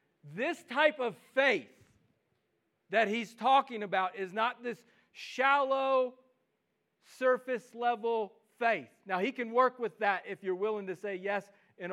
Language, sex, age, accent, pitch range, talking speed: English, male, 40-59, American, 165-220 Hz, 135 wpm